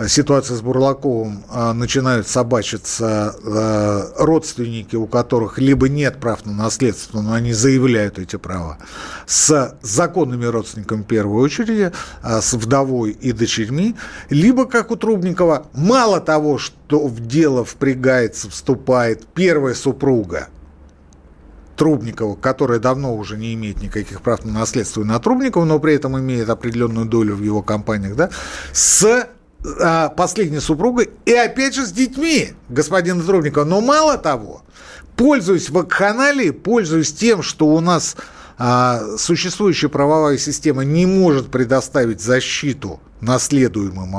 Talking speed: 125 wpm